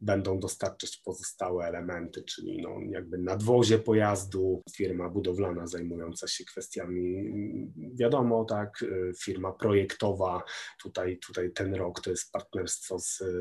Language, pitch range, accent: Polish, 90-105 Hz, native